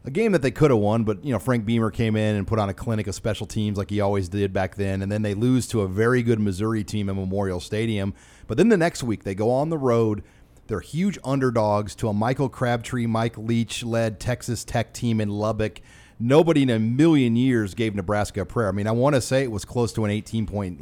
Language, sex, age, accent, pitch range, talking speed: English, male, 40-59, American, 100-125 Hz, 250 wpm